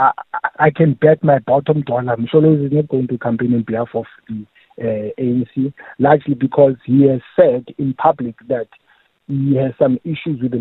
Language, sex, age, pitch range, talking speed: English, male, 50-69, 125-155 Hz, 185 wpm